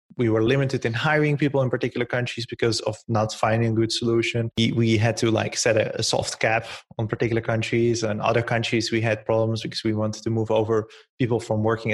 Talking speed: 220 wpm